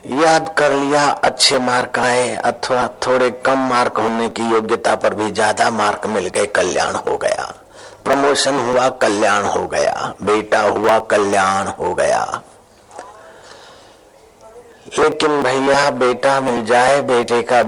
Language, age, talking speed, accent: Hindi, 60-79, 130 wpm, native